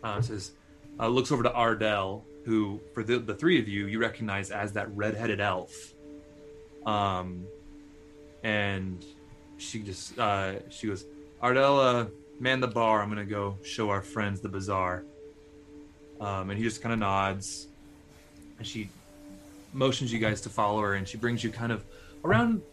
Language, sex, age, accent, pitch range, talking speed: English, male, 20-39, American, 100-130 Hz, 165 wpm